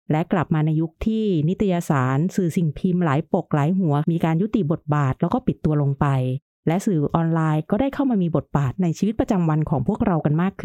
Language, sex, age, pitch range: Thai, female, 30-49, 150-195 Hz